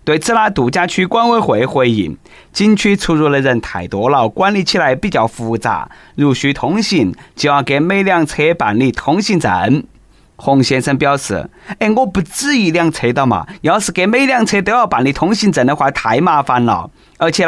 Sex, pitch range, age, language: male, 130-200 Hz, 20-39, Chinese